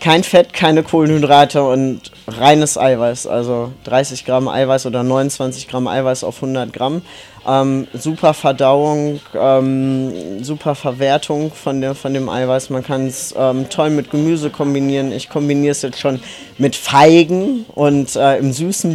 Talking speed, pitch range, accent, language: 145 wpm, 130-145 Hz, German, German